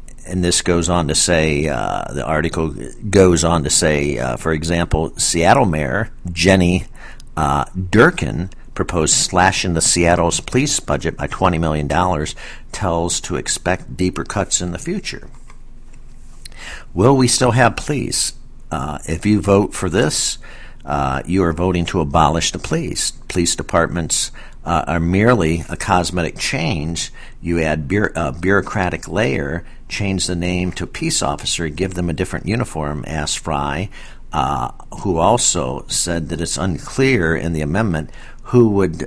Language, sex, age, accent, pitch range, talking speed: English, male, 50-69, American, 80-95 Hz, 145 wpm